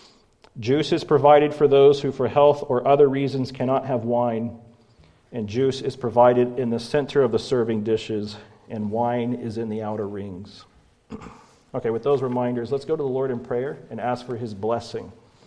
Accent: American